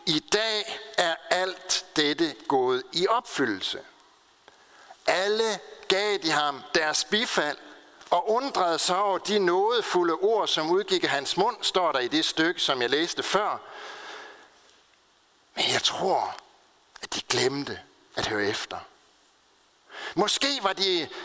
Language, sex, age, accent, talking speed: Danish, male, 60-79, native, 135 wpm